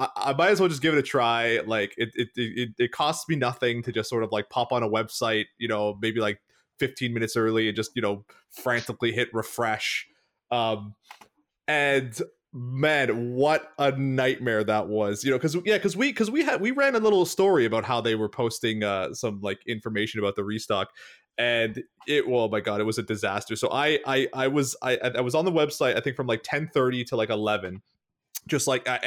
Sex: male